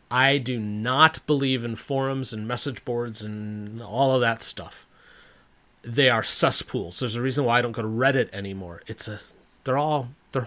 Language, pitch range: English, 120-150 Hz